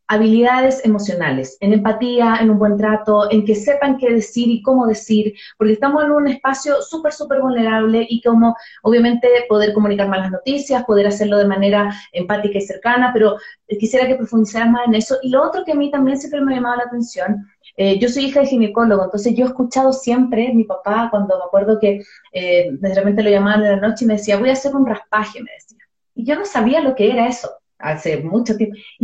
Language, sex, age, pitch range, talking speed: Spanish, female, 30-49, 210-265 Hz, 220 wpm